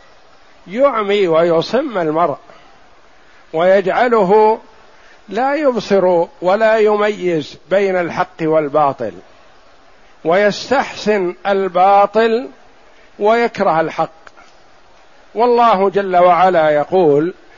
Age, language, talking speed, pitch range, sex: 50-69, Arabic, 65 wpm, 175-225 Hz, male